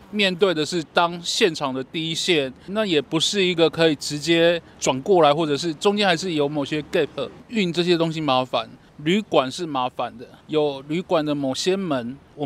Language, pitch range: Chinese, 145-175 Hz